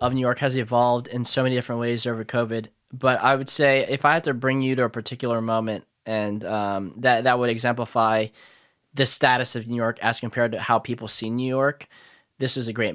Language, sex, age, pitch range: English, male, 10-29, 120-140 Hz